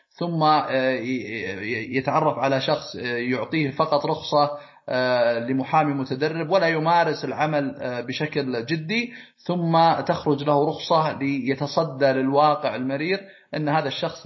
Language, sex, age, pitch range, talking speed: Arabic, male, 30-49, 135-170 Hz, 100 wpm